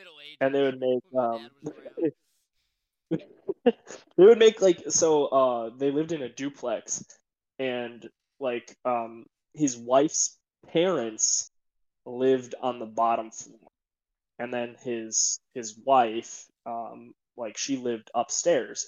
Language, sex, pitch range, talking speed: English, male, 115-140 Hz, 120 wpm